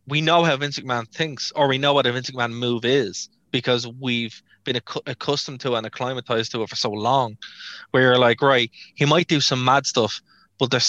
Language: English